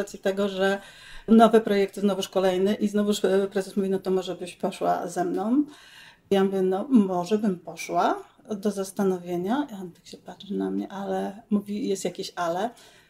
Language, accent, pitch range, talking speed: Polish, native, 190-220 Hz, 165 wpm